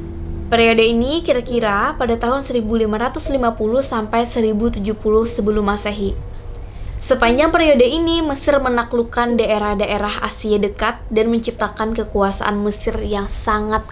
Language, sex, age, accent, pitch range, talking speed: Indonesian, female, 20-39, native, 215-260 Hz, 105 wpm